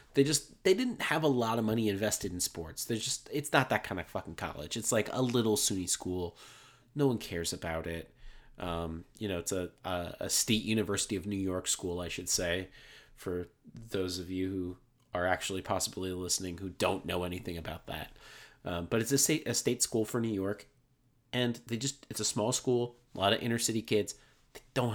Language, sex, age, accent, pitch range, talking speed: English, male, 30-49, American, 100-125 Hz, 215 wpm